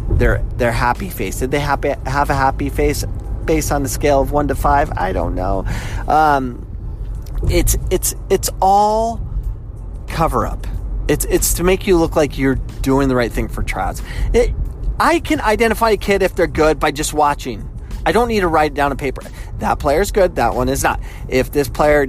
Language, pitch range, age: English, 110-160 Hz, 30-49